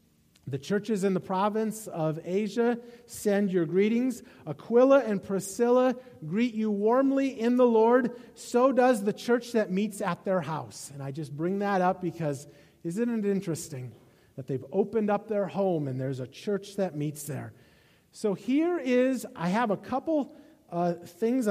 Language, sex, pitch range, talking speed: English, male, 155-225 Hz, 165 wpm